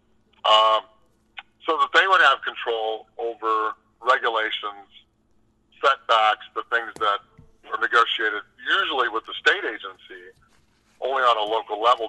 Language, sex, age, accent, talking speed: English, male, 50-69, American, 125 wpm